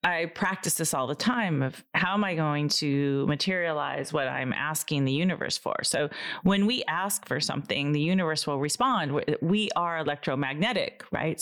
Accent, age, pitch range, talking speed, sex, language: American, 30-49, 150-185 Hz, 175 wpm, female, English